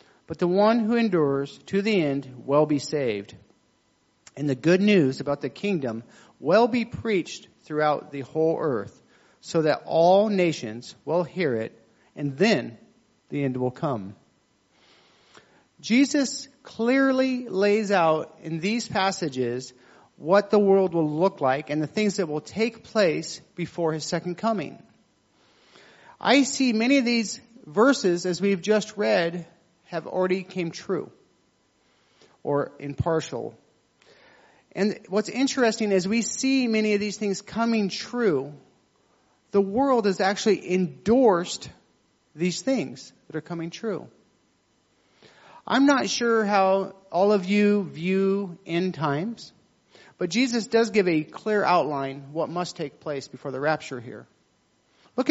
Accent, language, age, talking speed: American, English, 40-59, 140 wpm